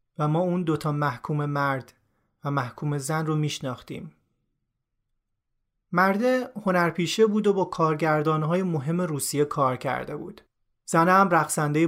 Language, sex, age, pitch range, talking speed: Persian, male, 30-49, 150-195 Hz, 125 wpm